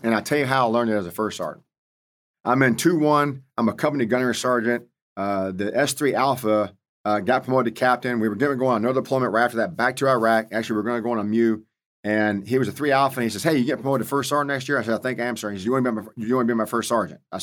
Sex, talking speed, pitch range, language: male, 315 wpm, 110-130 Hz, English